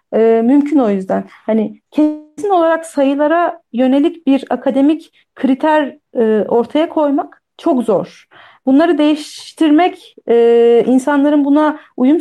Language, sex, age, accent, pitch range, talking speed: Turkish, female, 40-59, native, 235-330 Hz, 100 wpm